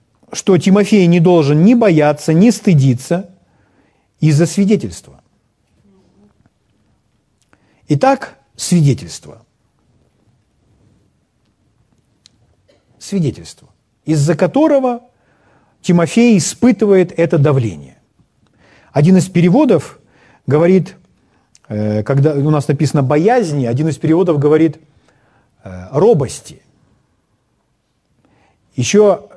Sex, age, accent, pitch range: male, 40-59, native, 135-200 Hz